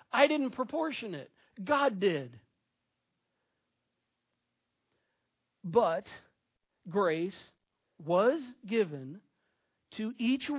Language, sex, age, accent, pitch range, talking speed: English, male, 50-69, American, 185-255 Hz, 70 wpm